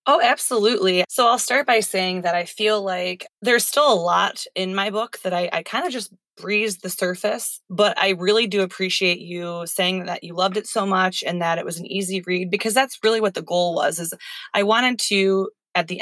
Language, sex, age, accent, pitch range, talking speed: English, female, 20-39, American, 175-210 Hz, 225 wpm